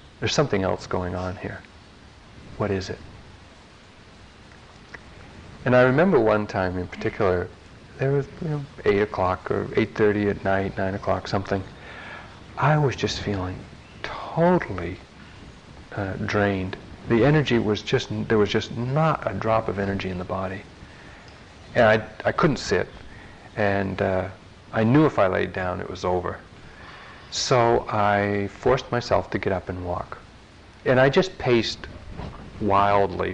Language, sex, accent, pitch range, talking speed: English, male, American, 95-120 Hz, 145 wpm